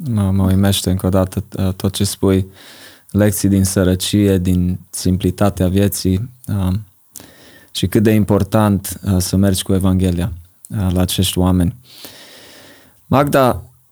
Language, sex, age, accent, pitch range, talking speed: Romanian, male, 20-39, Croatian, 95-105 Hz, 110 wpm